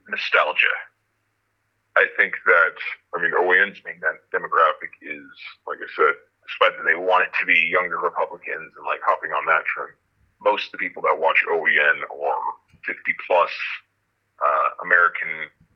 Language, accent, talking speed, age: English, American, 155 wpm, 30-49